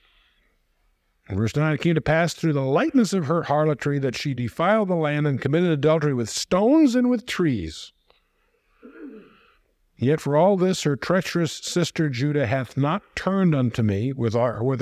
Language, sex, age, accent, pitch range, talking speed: English, male, 50-69, American, 125-175 Hz, 165 wpm